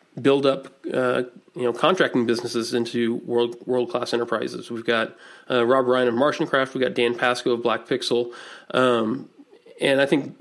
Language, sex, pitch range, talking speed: English, male, 120-130 Hz, 180 wpm